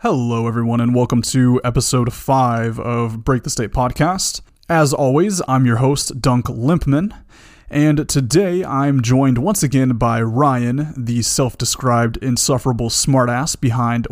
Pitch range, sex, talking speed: 125-155 Hz, male, 135 wpm